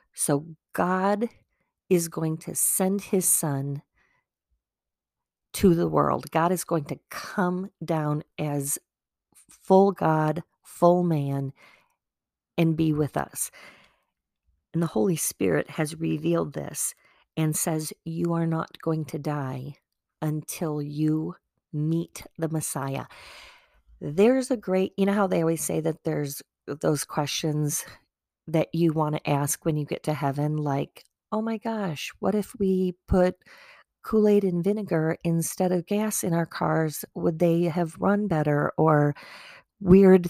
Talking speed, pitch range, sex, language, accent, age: 140 wpm, 155-200 Hz, female, English, American, 40-59